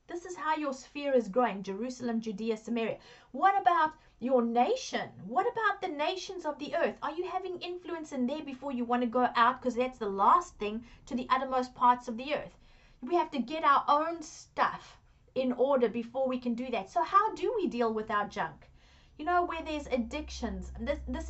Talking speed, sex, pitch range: 210 wpm, female, 235-290 Hz